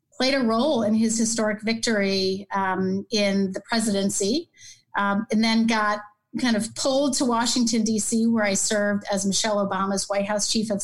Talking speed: 170 wpm